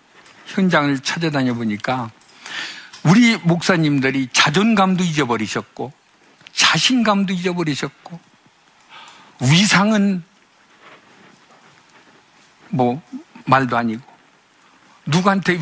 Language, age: Korean, 50-69